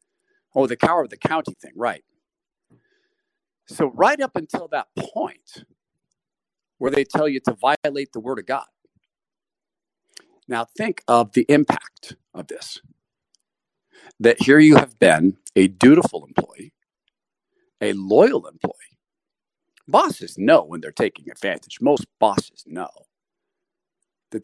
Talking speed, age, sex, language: 130 wpm, 50-69, male, English